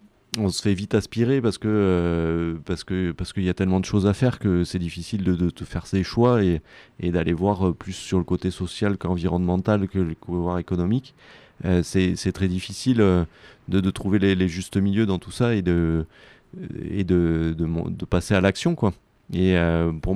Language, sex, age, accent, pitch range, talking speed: French, male, 30-49, French, 90-105 Hz, 210 wpm